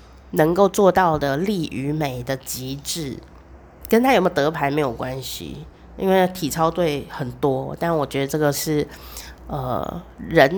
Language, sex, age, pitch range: Chinese, female, 30-49, 140-180 Hz